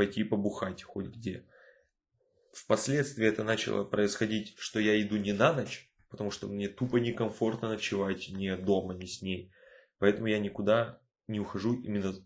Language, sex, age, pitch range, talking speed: Russian, male, 20-39, 100-130 Hz, 150 wpm